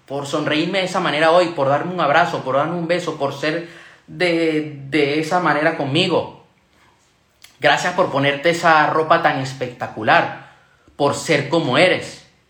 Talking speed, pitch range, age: 155 wpm, 125-165 Hz, 30-49